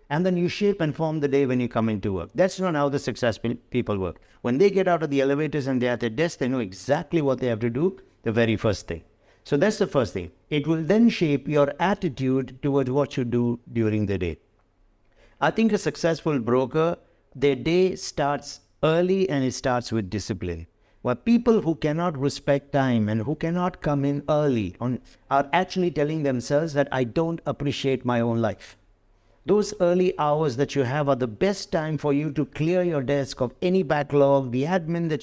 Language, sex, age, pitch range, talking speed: English, male, 60-79, 125-170 Hz, 205 wpm